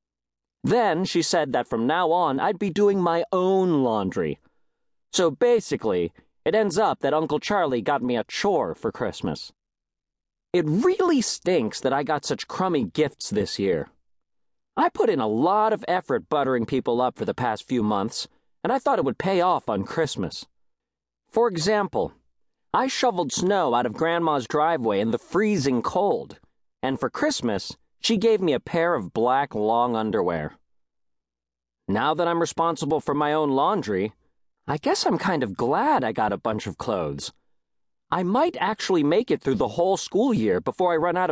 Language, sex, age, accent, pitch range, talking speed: English, male, 40-59, American, 125-205 Hz, 175 wpm